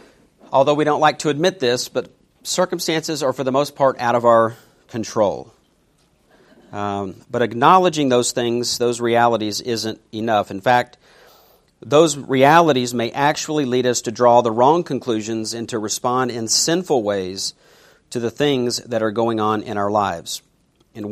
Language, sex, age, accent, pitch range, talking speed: English, male, 50-69, American, 115-140 Hz, 160 wpm